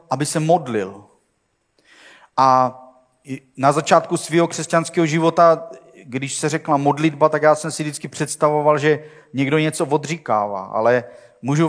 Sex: male